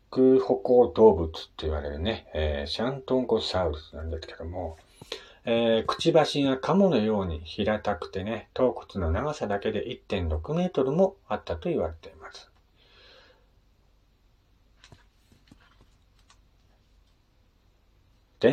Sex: male